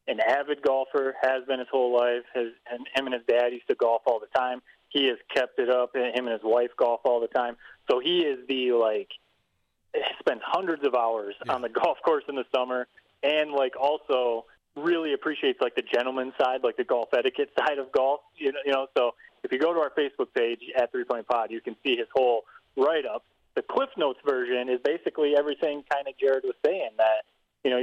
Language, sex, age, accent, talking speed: English, male, 30-49, American, 225 wpm